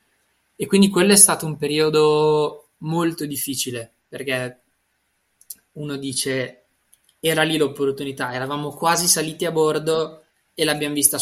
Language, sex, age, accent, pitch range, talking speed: Italian, male, 20-39, native, 135-165 Hz, 125 wpm